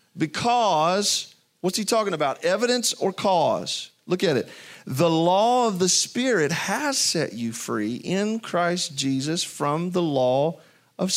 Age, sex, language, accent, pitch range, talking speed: 40-59, male, English, American, 185-245 Hz, 145 wpm